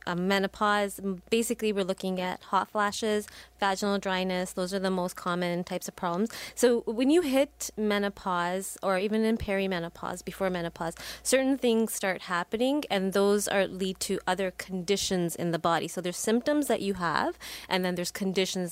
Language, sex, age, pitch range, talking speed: English, female, 20-39, 175-210 Hz, 170 wpm